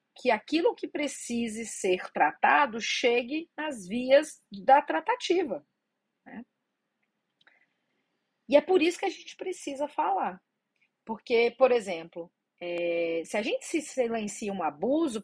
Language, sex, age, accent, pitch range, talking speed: Portuguese, female, 40-59, Brazilian, 220-290 Hz, 120 wpm